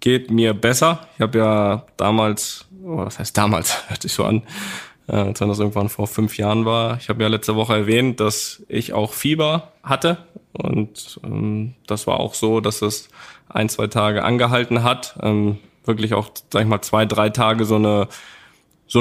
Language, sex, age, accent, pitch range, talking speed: German, male, 10-29, German, 105-125 Hz, 190 wpm